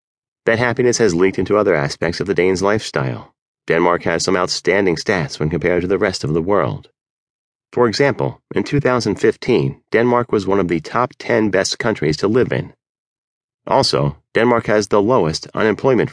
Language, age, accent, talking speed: English, 30-49, American, 170 wpm